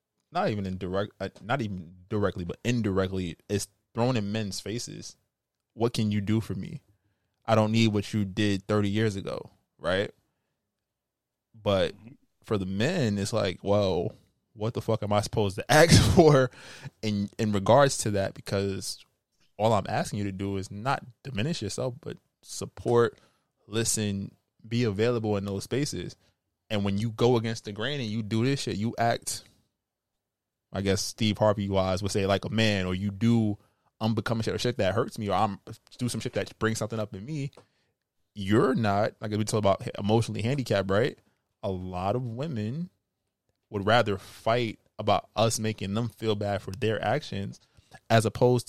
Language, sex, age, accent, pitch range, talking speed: English, male, 20-39, American, 100-120 Hz, 175 wpm